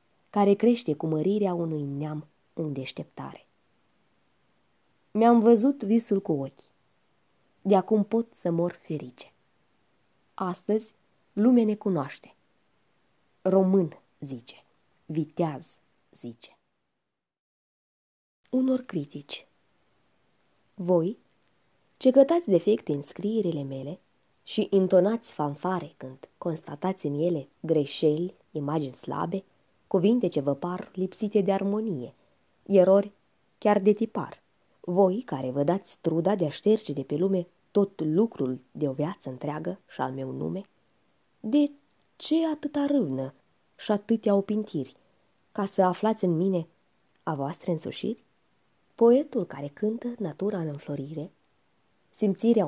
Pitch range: 150-215 Hz